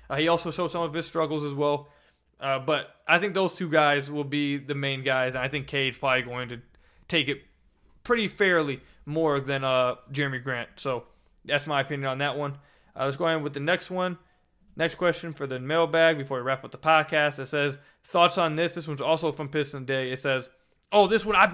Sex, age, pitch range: male, 20-39, 140-175 Hz